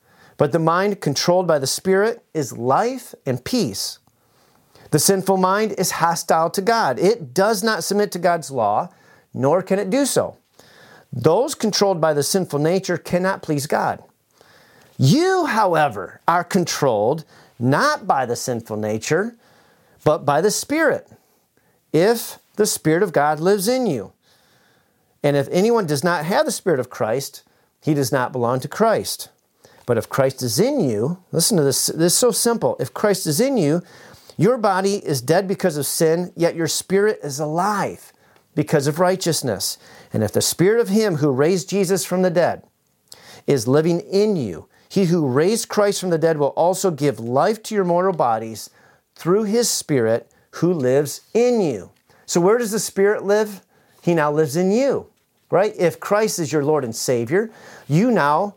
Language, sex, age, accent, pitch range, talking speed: English, male, 40-59, American, 150-205 Hz, 170 wpm